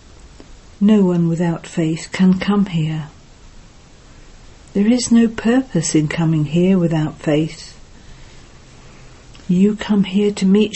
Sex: female